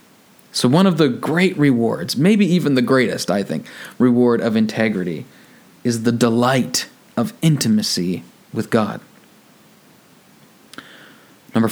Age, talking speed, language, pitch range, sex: 30-49, 120 wpm, English, 110-140 Hz, male